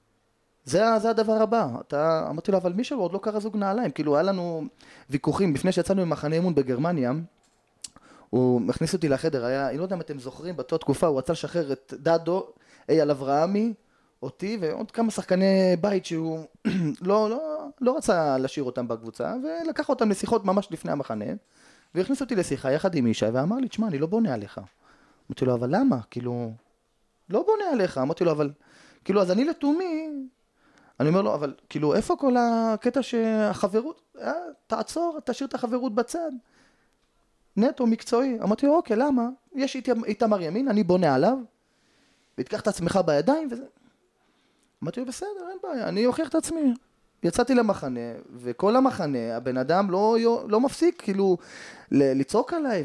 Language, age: Hebrew, 20-39